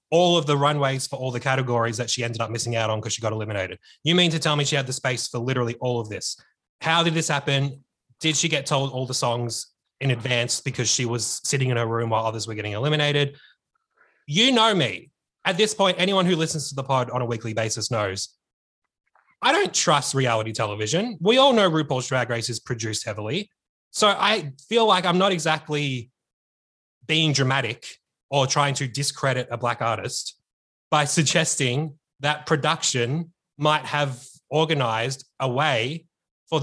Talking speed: 190 wpm